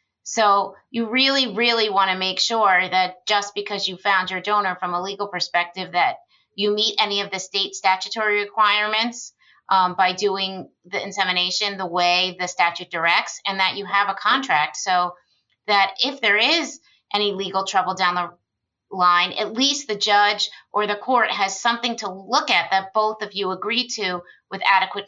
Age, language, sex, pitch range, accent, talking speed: 30-49, English, female, 180-210 Hz, American, 180 wpm